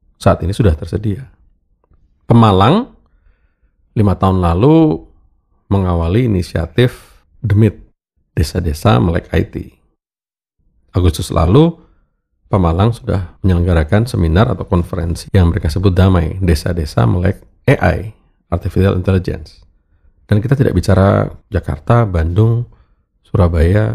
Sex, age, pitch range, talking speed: male, 40-59, 85-110 Hz, 95 wpm